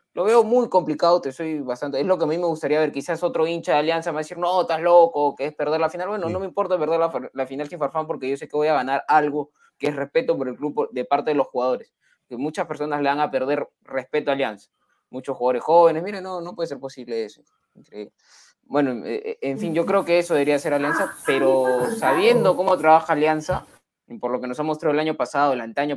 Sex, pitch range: male, 135-175 Hz